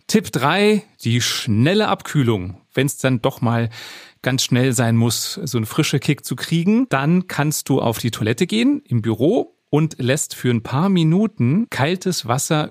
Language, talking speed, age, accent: German, 175 wpm, 40-59, German